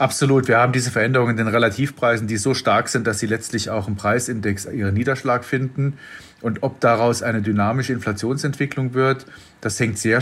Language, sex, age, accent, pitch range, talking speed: English, male, 40-59, German, 105-125 Hz, 180 wpm